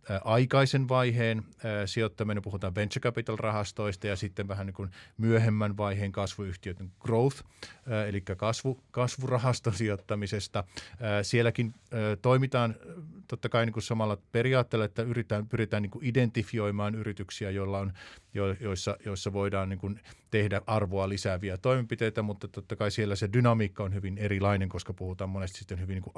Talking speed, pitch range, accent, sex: 120 wpm, 95-115 Hz, native, male